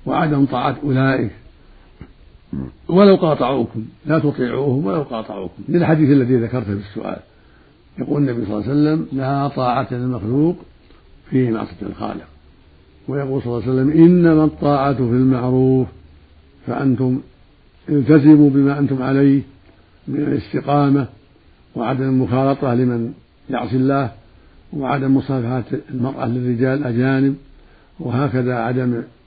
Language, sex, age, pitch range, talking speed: Arabic, male, 60-79, 115-140 Hz, 110 wpm